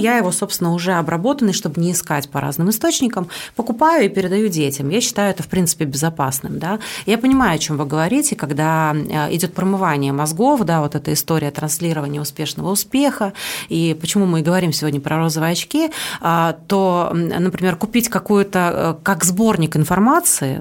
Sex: female